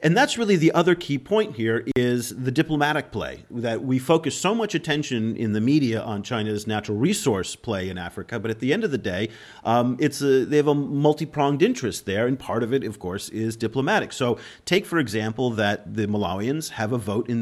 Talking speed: 215 wpm